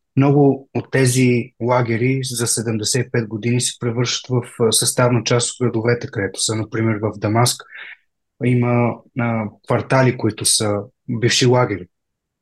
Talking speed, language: 125 wpm, Bulgarian